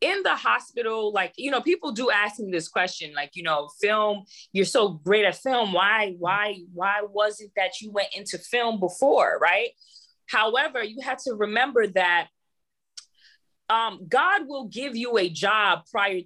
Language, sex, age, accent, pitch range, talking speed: English, female, 20-39, American, 180-245 Hz, 175 wpm